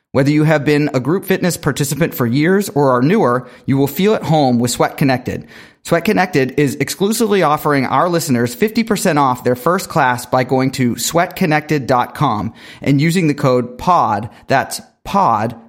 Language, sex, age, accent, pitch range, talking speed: English, male, 30-49, American, 130-175 Hz, 170 wpm